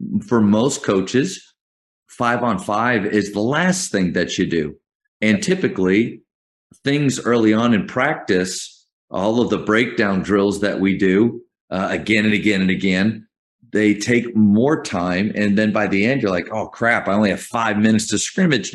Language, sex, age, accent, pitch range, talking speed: English, male, 40-59, American, 100-120 Hz, 170 wpm